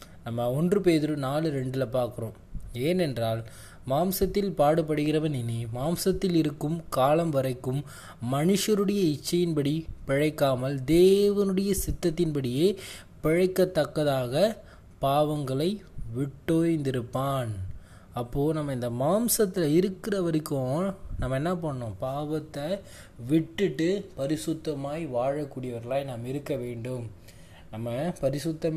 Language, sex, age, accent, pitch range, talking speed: Tamil, male, 20-39, native, 125-160 Hz, 85 wpm